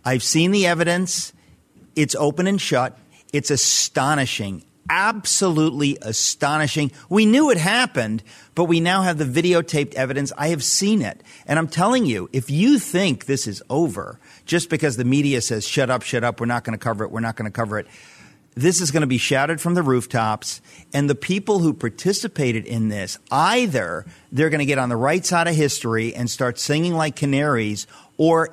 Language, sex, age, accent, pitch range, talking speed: English, male, 50-69, American, 120-155 Hz, 190 wpm